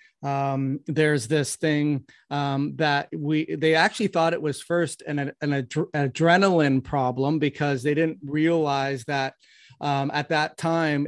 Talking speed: 145 wpm